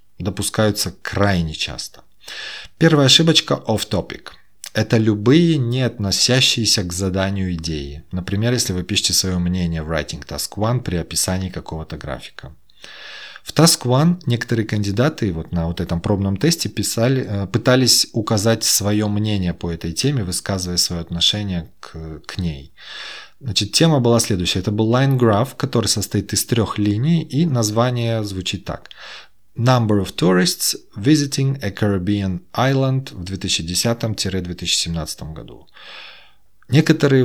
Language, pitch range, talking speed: Russian, 90-120 Hz, 130 wpm